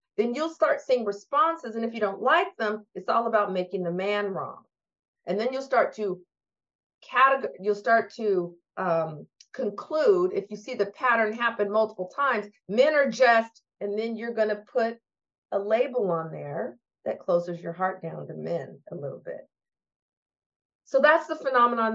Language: English